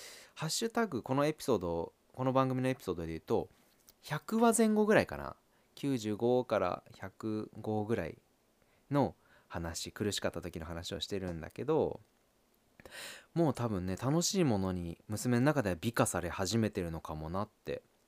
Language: Japanese